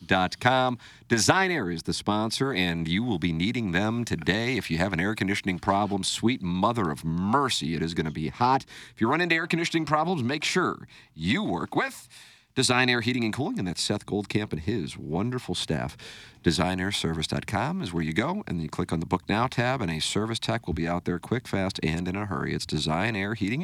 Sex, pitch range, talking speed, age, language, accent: male, 85-130 Hz, 215 wpm, 50-69, English, American